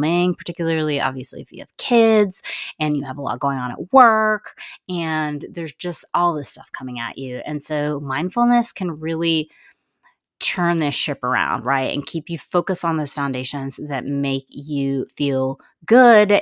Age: 30-49